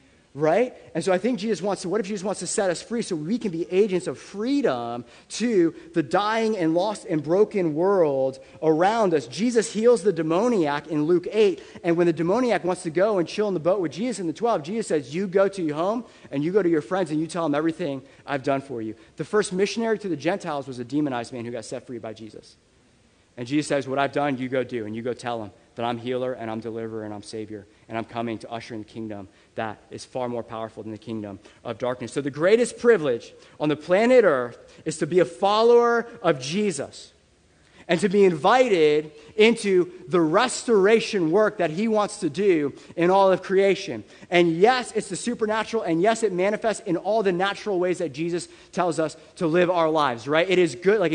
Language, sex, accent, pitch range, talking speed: English, male, American, 150-210 Hz, 230 wpm